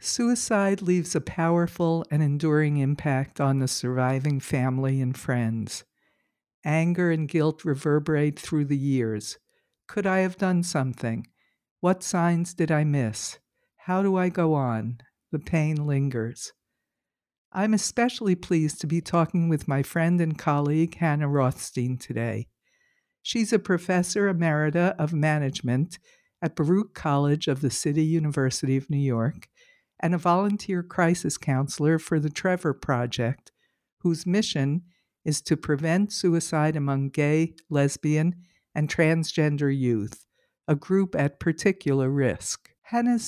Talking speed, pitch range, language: 130 wpm, 140-175 Hz, English